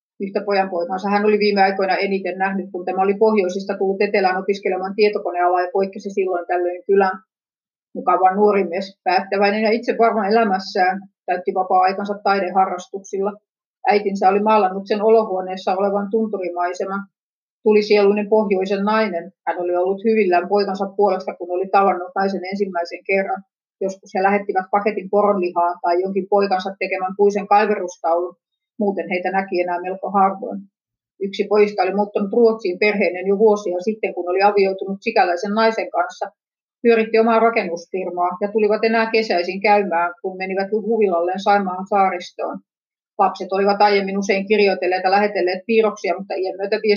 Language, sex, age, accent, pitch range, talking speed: Finnish, female, 30-49, native, 185-210 Hz, 140 wpm